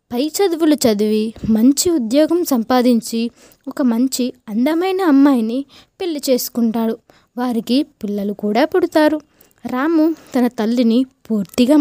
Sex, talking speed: female, 100 wpm